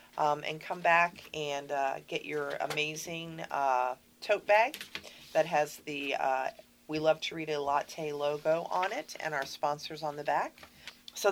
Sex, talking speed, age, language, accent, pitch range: female, 170 wpm, 40-59, English, American, 150-185 Hz